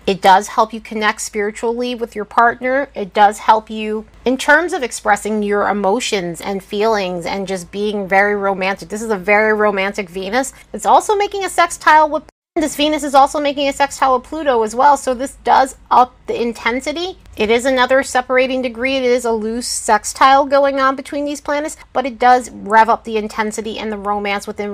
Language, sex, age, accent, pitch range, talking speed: English, female, 30-49, American, 210-275 Hz, 195 wpm